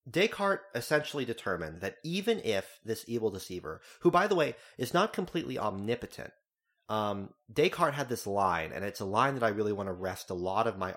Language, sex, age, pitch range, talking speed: English, male, 30-49, 95-140 Hz, 195 wpm